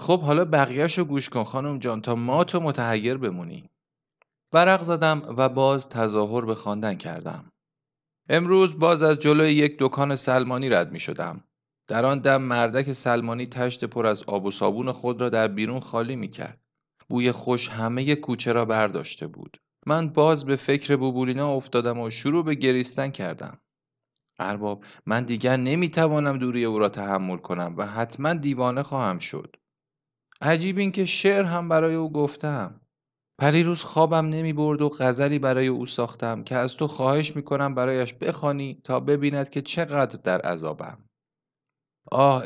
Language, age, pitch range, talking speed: Persian, 30-49, 120-150 Hz, 160 wpm